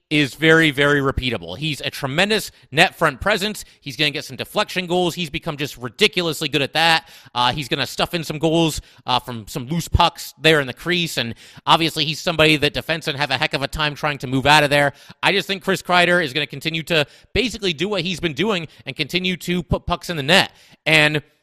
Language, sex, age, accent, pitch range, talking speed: English, male, 30-49, American, 140-185 Hz, 240 wpm